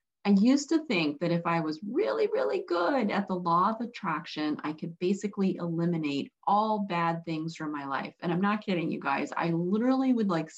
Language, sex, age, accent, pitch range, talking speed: English, female, 30-49, American, 170-240 Hz, 205 wpm